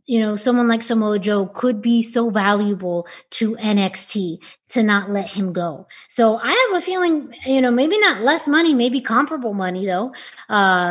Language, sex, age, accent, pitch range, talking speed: English, female, 20-39, American, 180-220 Hz, 180 wpm